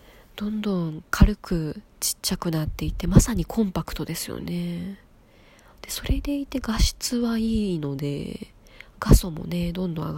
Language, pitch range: Japanese, 155-215 Hz